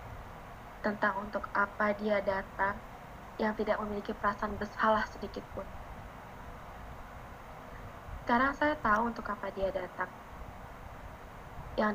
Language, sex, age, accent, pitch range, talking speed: Indonesian, female, 20-39, native, 200-225 Hz, 95 wpm